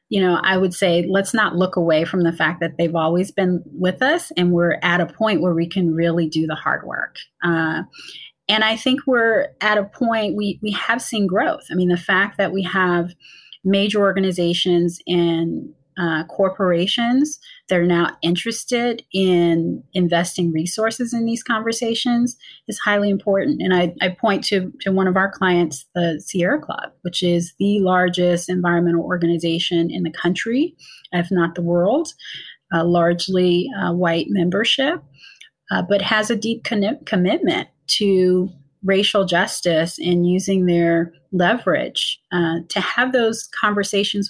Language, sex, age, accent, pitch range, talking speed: English, female, 30-49, American, 170-205 Hz, 160 wpm